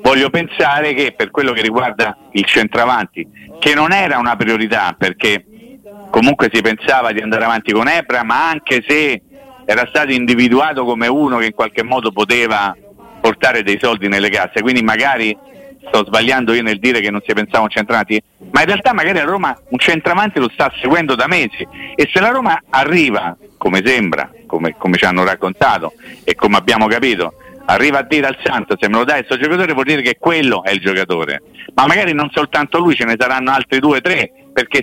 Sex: male